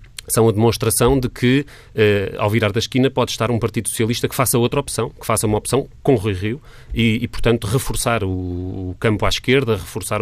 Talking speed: 215 wpm